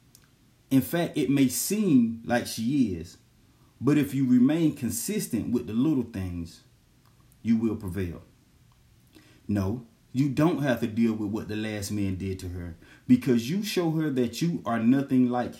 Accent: American